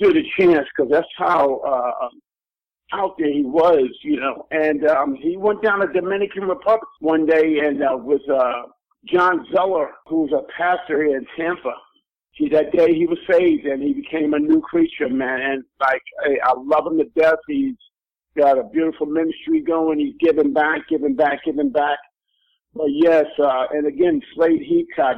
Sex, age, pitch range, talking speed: male, 50-69, 145-185 Hz, 180 wpm